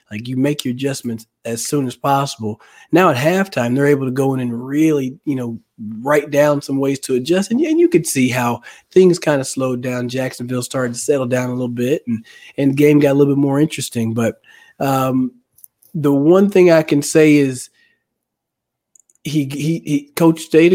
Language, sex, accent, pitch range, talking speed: English, male, American, 125-155 Hz, 195 wpm